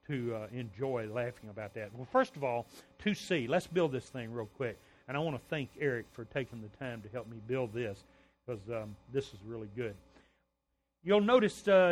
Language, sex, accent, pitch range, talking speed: English, male, American, 130-155 Hz, 200 wpm